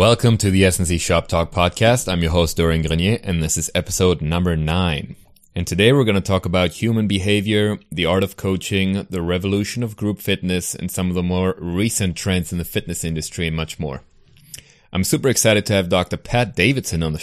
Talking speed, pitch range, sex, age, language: 210 wpm, 90-110 Hz, male, 30-49, English